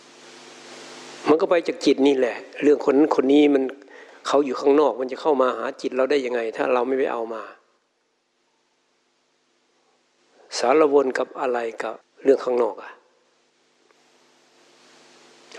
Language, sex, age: Thai, male, 60-79